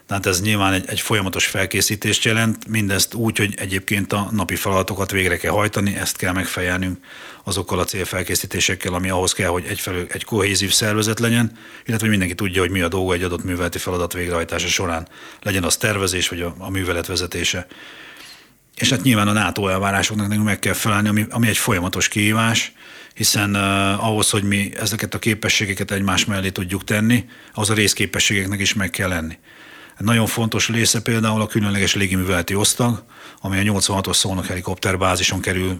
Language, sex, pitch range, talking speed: Hungarian, male, 90-110 Hz, 170 wpm